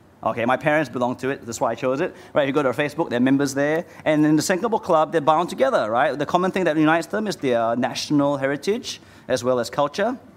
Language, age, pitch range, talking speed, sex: English, 30-49, 125-155 Hz, 245 wpm, male